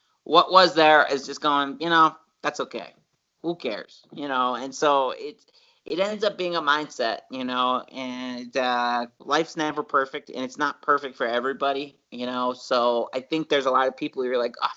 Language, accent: English, American